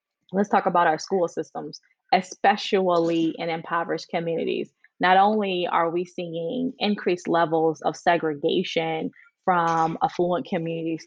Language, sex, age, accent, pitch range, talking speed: English, female, 10-29, American, 165-195 Hz, 120 wpm